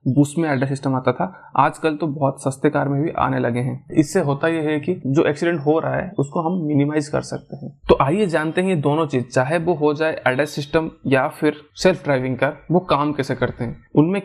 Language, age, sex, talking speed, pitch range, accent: Hindi, 20-39, male, 230 wpm, 140-165 Hz, native